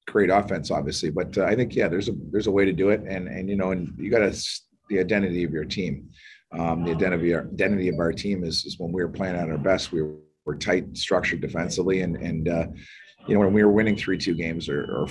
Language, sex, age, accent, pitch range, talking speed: English, male, 30-49, American, 85-100 Hz, 260 wpm